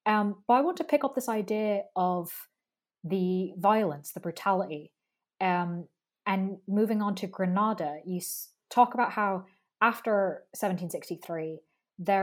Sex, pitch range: female, 170-215 Hz